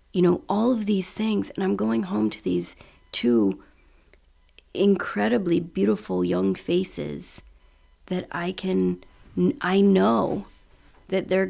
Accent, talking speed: American, 125 wpm